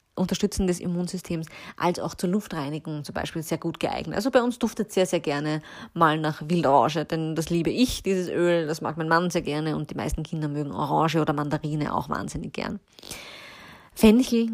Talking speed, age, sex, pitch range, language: 190 wpm, 20-39, female, 165-220 Hz, German